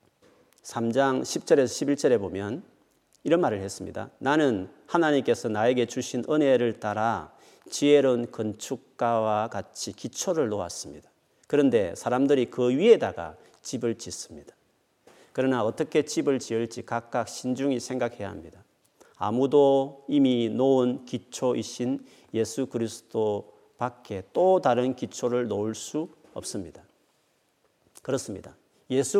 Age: 40-59